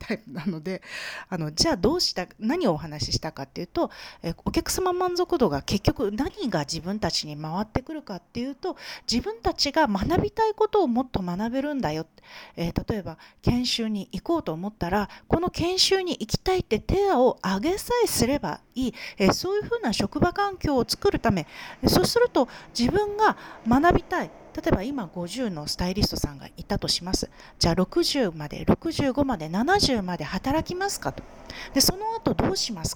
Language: Japanese